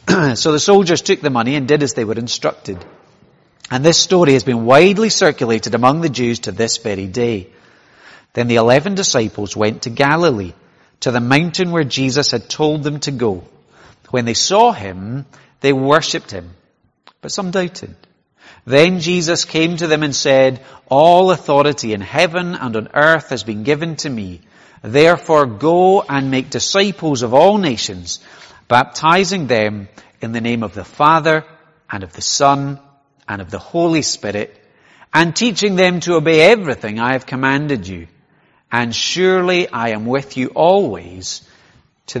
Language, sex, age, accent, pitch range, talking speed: English, male, 40-59, British, 115-165 Hz, 165 wpm